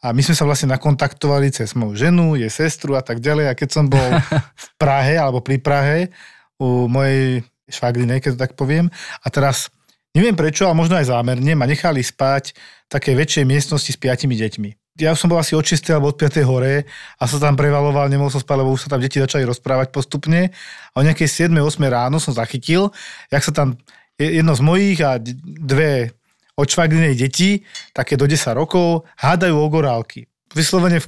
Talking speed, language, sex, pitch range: 190 wpm, Slovak, male, 130-160 Hz